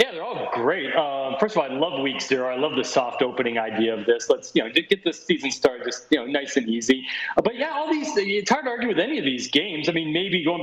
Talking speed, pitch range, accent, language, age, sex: 280 wpm, 135-190 Hz, American, English, 40-59, male